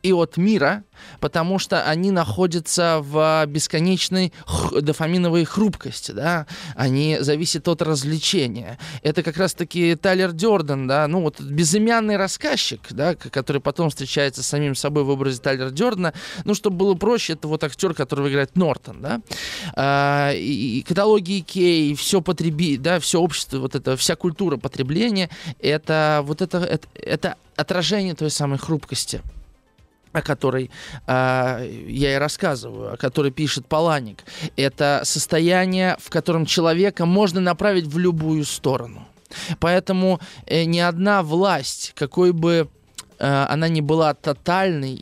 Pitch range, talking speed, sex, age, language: 140-175 Hz, 145 wpm, male, 20-39, Russian